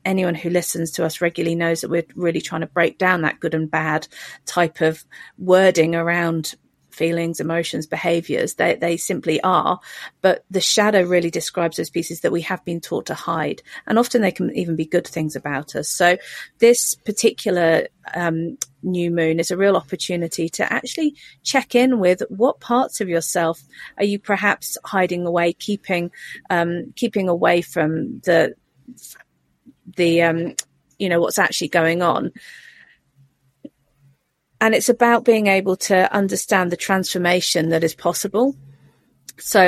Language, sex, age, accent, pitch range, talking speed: English, female, 40-59, British, 165-195 Hz, 155 wpm